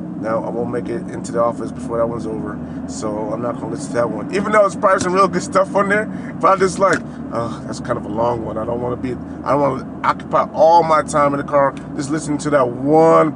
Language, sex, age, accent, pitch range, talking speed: English, male, 30-49, American, 140-180 Hz, 285 wpm